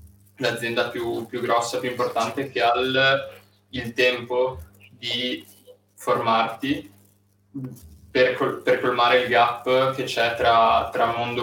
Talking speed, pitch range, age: 120 wpm, 110-125 Hz, 10-29